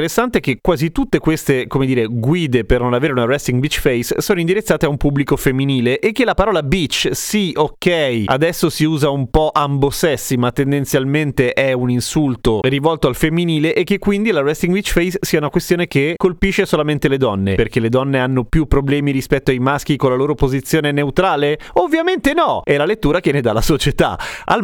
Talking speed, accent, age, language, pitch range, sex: 200 wpm, native, 30-49, Italian, 130-165 Hz, male